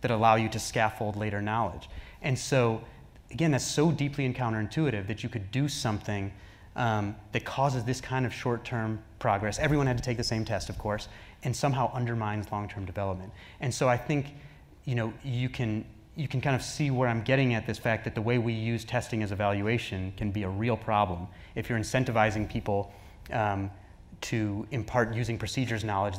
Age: 30-49